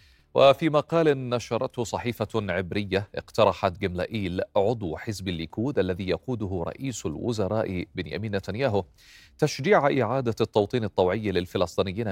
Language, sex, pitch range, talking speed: Arabic, male, 90-125 Hz, 105 wpm